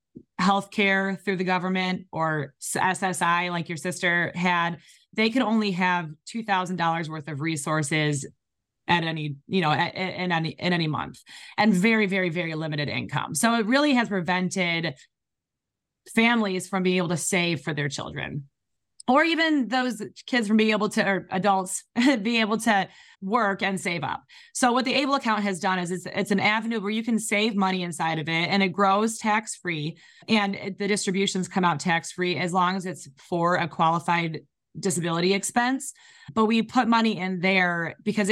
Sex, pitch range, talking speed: female, 170-215 Hz, 175 wpm